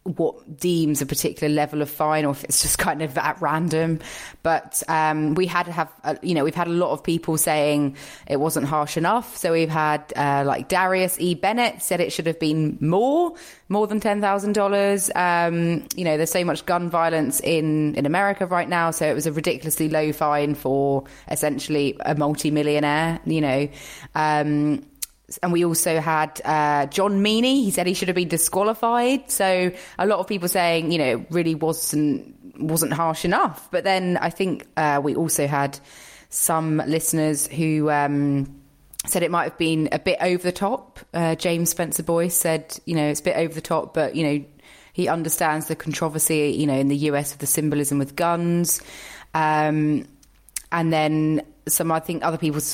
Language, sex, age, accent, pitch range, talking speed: English, female, 20-39, British, 150-175 Hz, 190 wpm